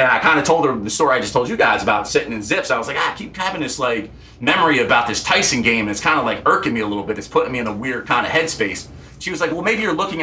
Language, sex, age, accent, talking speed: English, male, 30-49, American, 335 wpm